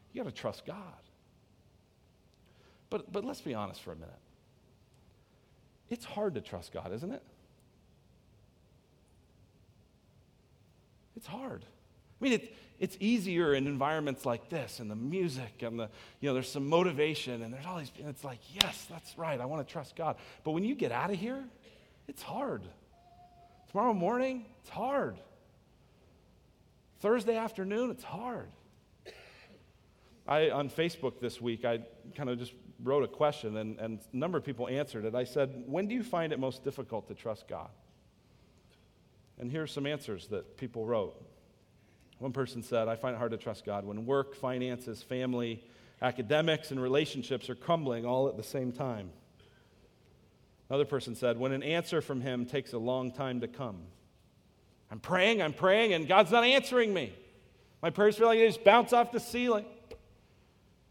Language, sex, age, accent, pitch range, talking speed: English, male, 40-59, American, 120-180 Hz, 165 wpm